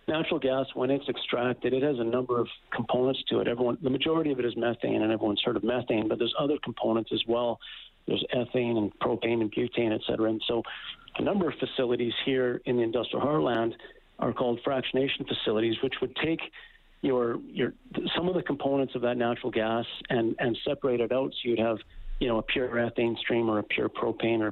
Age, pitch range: 50-69, 115-135 Hz